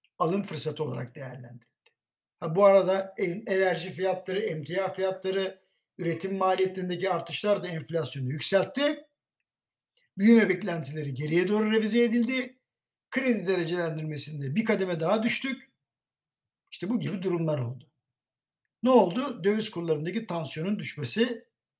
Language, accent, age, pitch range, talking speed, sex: Turkish, native, 60-79, 155-205 Hz, 110 wpm, male